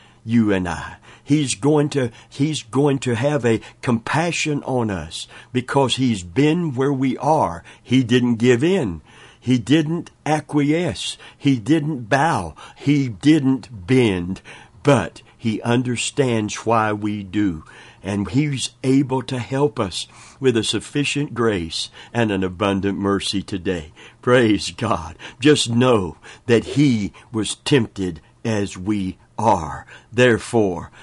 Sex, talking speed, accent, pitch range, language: male, 130 wpm, American, 100-135 Hz, English